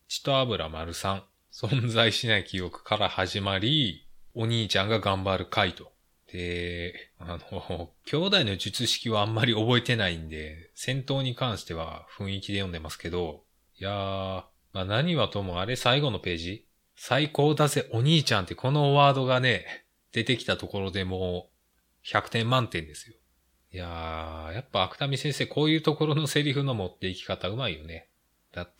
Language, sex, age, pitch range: Japanese, male, 20-39, 85-120 Hz